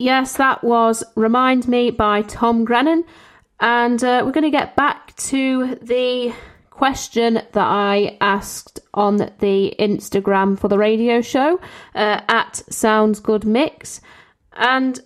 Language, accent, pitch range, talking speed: English, British, 215-255 Hz, 130 wpm